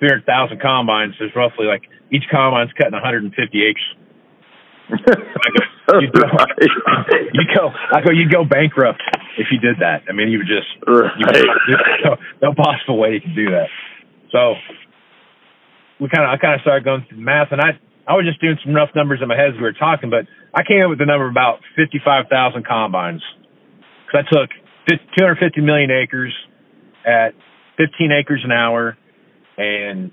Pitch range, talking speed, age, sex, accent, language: 110-145 Hz, 175 wpm, 40-59, male, American, English